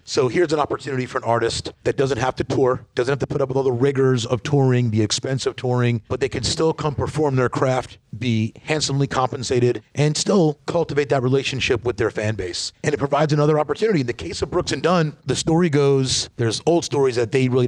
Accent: American